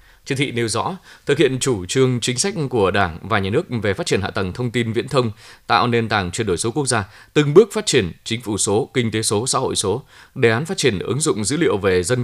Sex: male